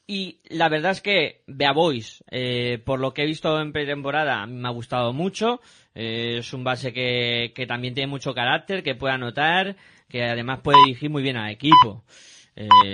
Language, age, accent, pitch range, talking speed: Spanish, 20-39, Spanish, 125-165 Hz, 205 wpm